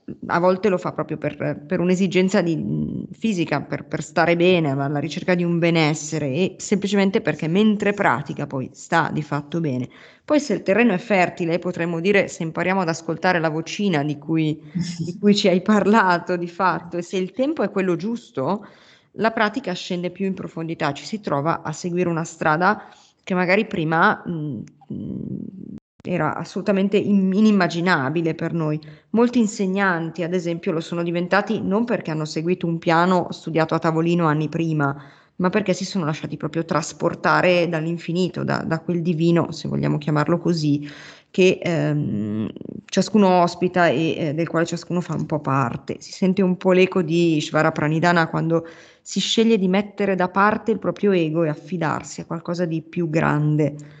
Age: 30-49